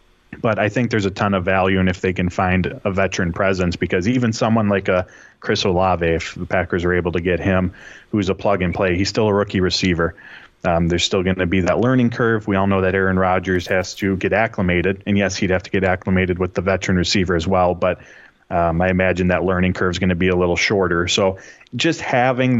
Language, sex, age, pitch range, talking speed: English, male, 20-39, 90-100 Hz, 235 wpm